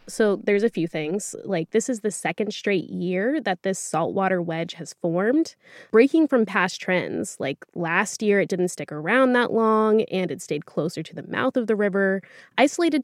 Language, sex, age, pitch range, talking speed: English, female, 20-39, 175-250 Hz, 195 wpm